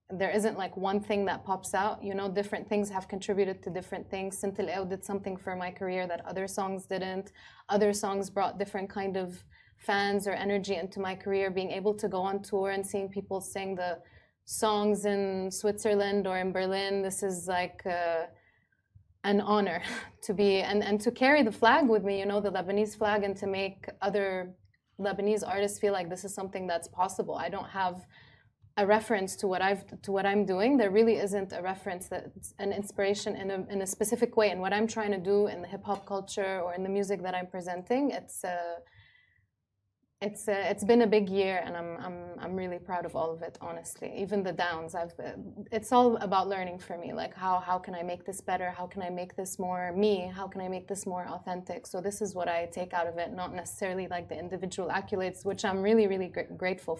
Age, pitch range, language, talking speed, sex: 20-39, 180-205 Hz, Arabic, 220 wpm, female